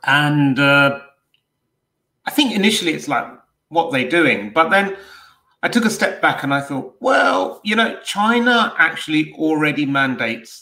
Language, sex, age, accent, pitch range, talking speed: English, male, 40-59, British, 120-150 Hz, 155 wpm